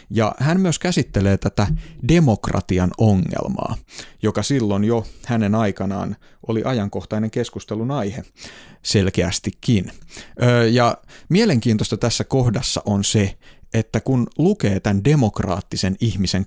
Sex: male